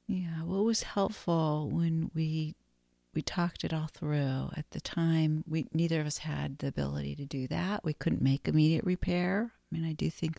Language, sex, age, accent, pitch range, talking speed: English, female, 50-69, American, 140-175 Hz, 200 wpm